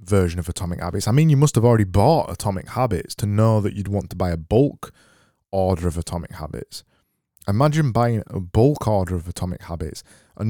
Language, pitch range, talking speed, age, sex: English, 100-135 Hz, 200 wpm, 20-39, male